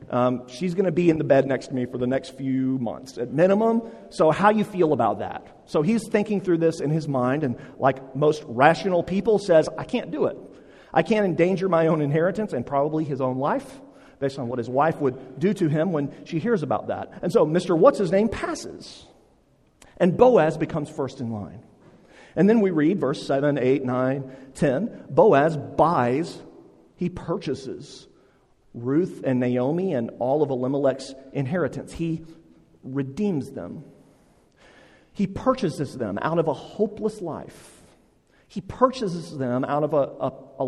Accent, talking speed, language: American, 175 wpm, English